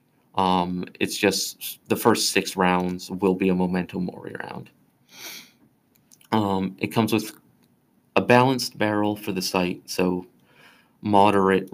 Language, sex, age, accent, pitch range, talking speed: English, male, 30-49, American, 95-105 Hz, 130 wpm